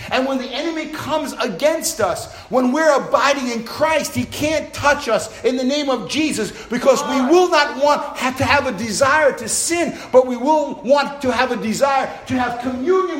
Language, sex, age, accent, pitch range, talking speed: English, male, 50-69, American, 255-310 Hz, 200 wpm